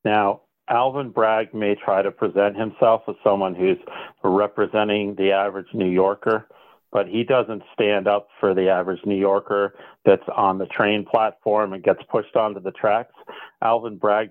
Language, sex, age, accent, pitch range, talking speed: English, male, 40-59, American, 100-115 Hz, 165 wpm